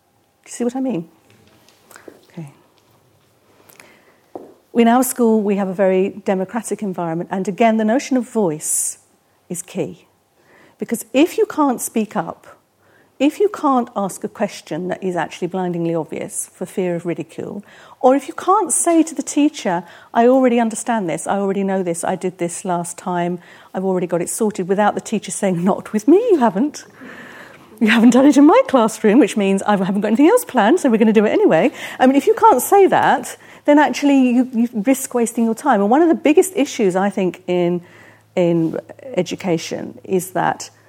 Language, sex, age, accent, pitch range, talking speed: English, female, 50-69, British, 180-255 Hz, 190 wpm